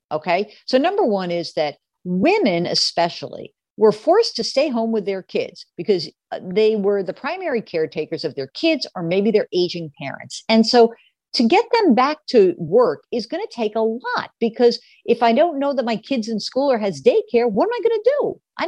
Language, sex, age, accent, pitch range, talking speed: English, female, 50-69, American, 175-260 Hz, 205 wpm